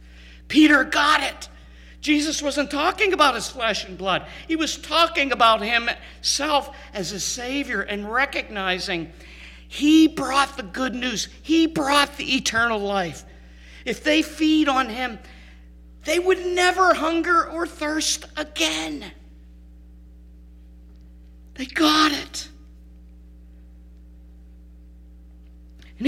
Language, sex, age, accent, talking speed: English, male, 50-69, American, 110 wpm